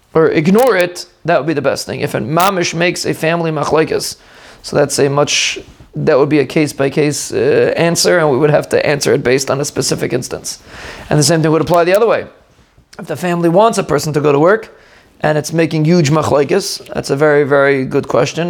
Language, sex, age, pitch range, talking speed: English, male, 30-49, 155-185 Hz, 225 wpm